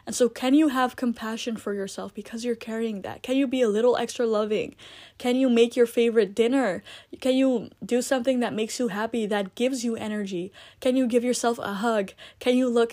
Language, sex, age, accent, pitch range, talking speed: English, female, 10-29, American, 205-245 Hz, 215 wpm